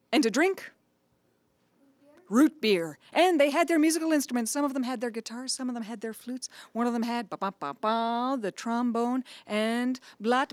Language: English